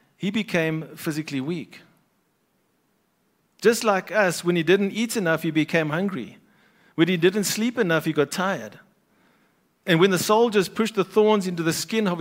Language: English